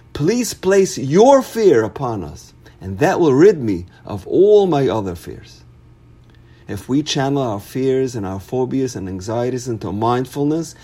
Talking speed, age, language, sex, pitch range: 155 wpm, 50-69, English, male, 115-155 Hz